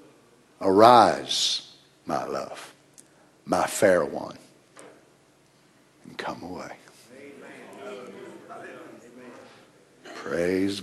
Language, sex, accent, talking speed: English, male, American, 55 wpm